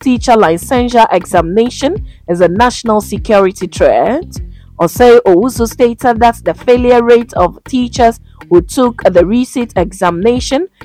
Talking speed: 120 wpm